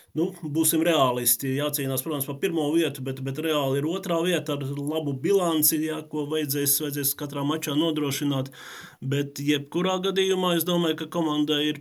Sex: male